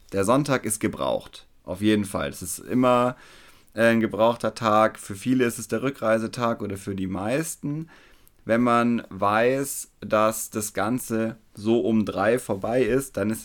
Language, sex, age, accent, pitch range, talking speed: German, male, 30-49, German, 100-120 Hz, 160 wpm